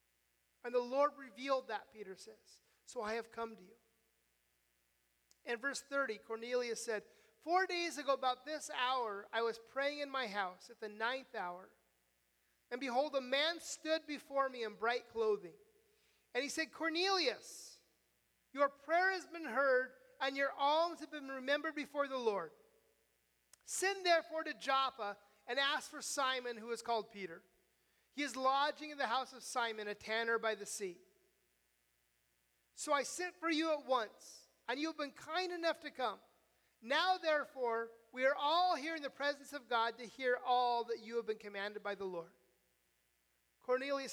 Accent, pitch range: American, 215-290 Hz